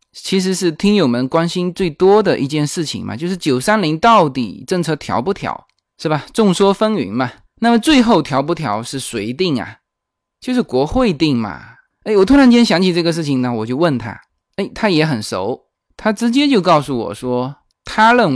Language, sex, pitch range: Chinese, male, 130-195 Hz